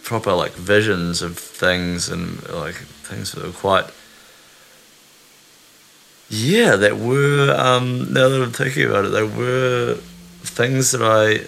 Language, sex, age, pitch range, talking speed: English, male, 30-49, 90-120 Hz, 135 wpm